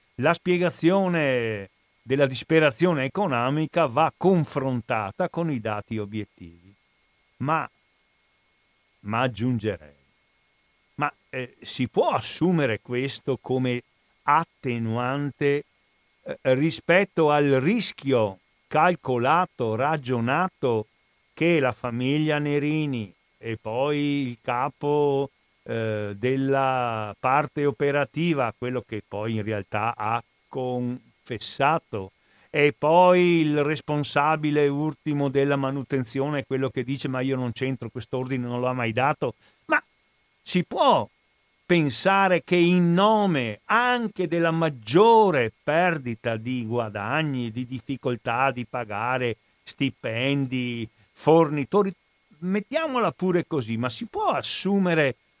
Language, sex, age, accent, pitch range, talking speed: Italian, male, 50-69, native, 120-160 Hz, 100 wpm